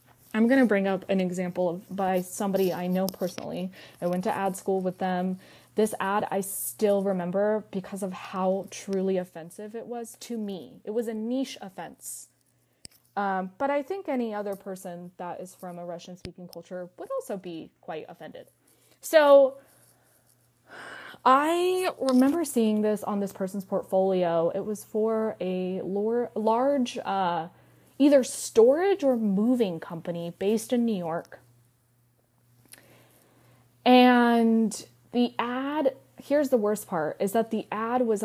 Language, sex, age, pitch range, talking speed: English, female, 20-39, 180-235 Hz, 145 wpm